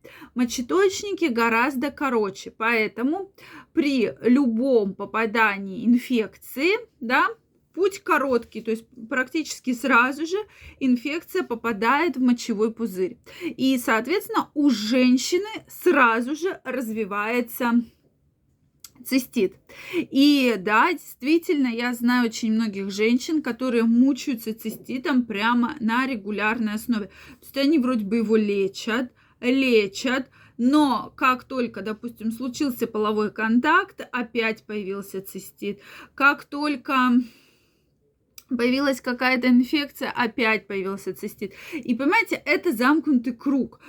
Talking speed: 105 wpm